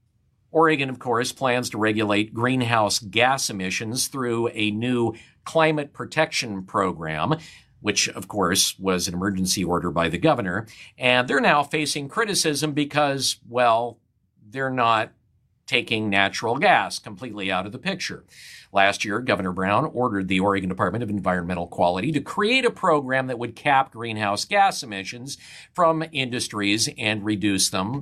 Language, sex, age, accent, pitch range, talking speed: English, male, 50-69, American, 105-145 Hz, 145 wpm